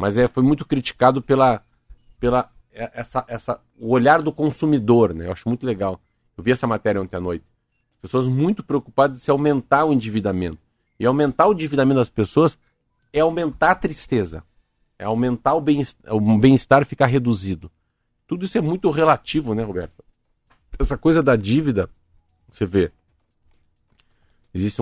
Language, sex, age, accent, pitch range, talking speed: Portuguese, male, 50-69, Brazilian, 100-140 Hz, 155 wpm